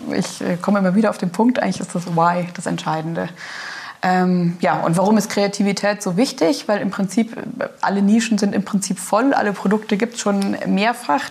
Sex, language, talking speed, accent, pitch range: female, German, 190 wpm, German, 180-210 Hz